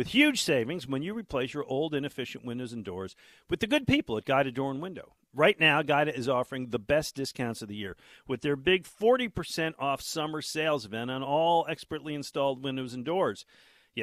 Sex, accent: male, American